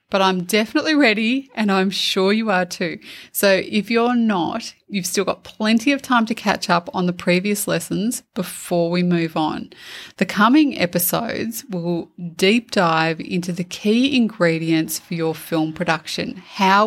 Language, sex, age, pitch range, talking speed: English, female, 20-39, 170-215 Hz, 165 wpm